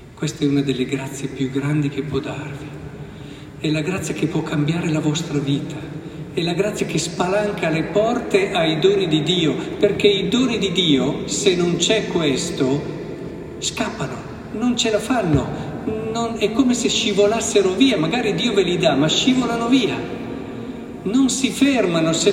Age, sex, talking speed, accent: 50-69, male, 165 wpm, native